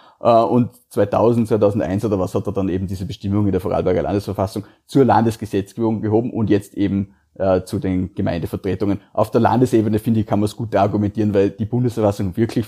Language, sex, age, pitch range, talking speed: German, male, 30-49, 105-120 Hz, 185 wpm